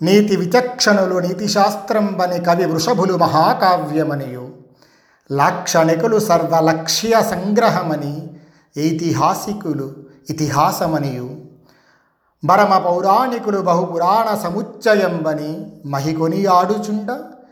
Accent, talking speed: native, 55 wpm